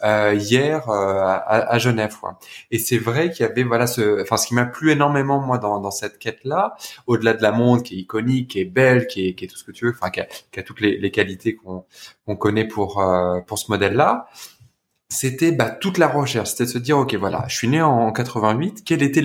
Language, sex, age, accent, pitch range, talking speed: French, male, 20-39, French, 105-130 Hz, 255 wpm